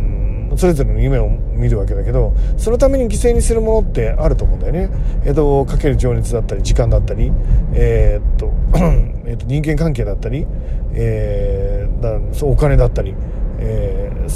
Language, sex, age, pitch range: Japanese, male, 40-59, 110-155 Hz